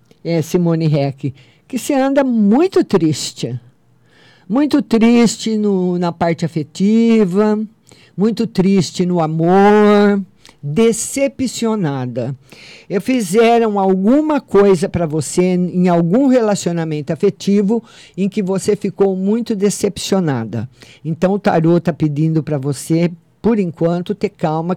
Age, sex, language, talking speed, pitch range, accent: 50-69, male, Portuguese, 110 wpm, 170-230 Hz, Brazilian